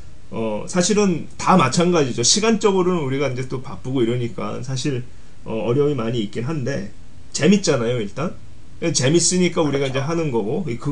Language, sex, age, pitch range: Korean, male, 30-49, 125-175 Hz